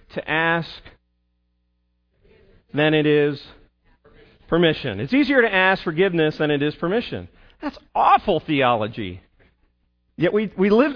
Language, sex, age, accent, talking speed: English, male, 40-59, American, 120 wpm